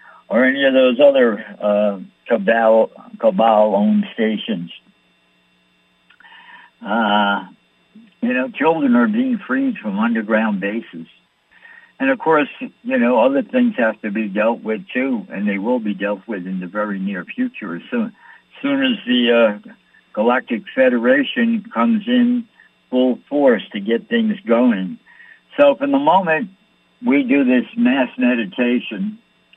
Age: 60-79